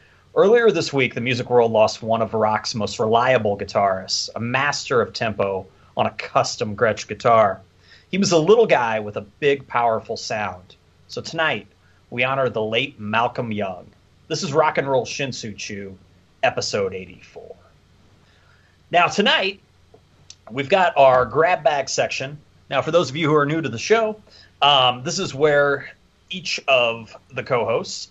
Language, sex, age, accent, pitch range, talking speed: English, male, 30-49, American, 100-135 Hz, 160 wpm